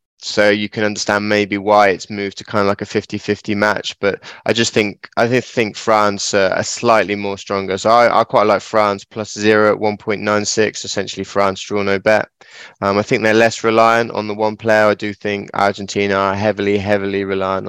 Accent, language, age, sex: British, English, 20-39, male